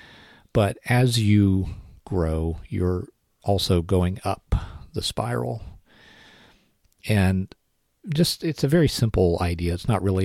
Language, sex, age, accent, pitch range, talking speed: English, male, 40-59, American, 85-105 Hz, 115 wpm